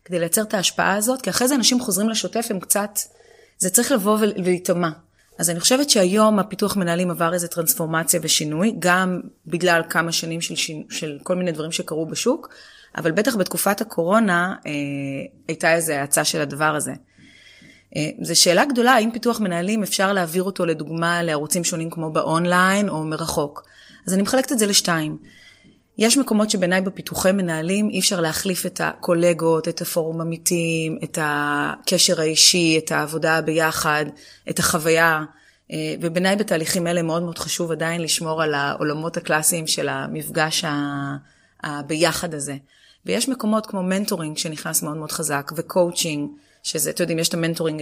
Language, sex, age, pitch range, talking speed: Hebrew, female, 30-49, 160-190 Hz, 155 wpm